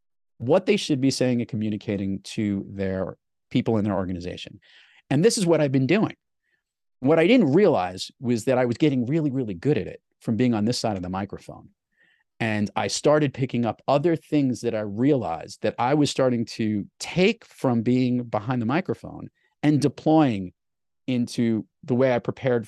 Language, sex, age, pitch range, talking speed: English, male, 40-59, 100-125 Hz, 185 wpm